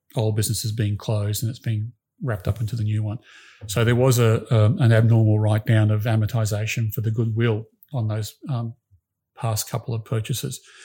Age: 40-59